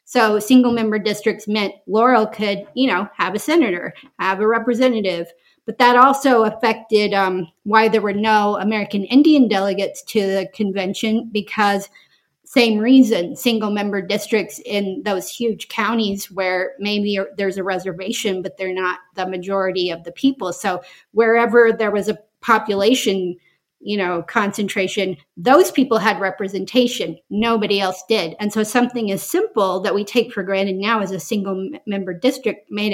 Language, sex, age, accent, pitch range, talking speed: English, female, 40-59, American, 195-225 Hz, 155 wpm